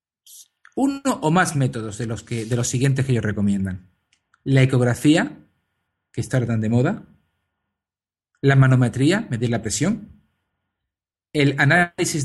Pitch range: 100-150 Hz